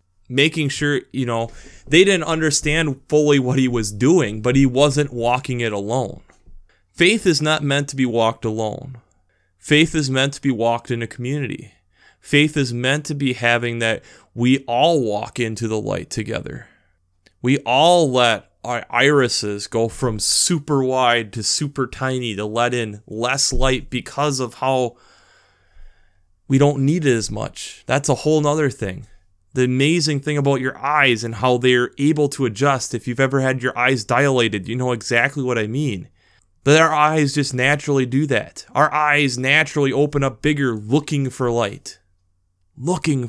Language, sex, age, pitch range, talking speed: English, male, 20-39, 115-145 Hz, 170 wpm